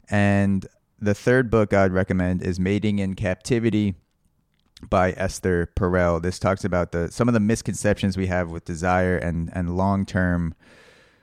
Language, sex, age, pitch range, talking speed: English, male, 20-39, 90-105 Hz, 155 wpm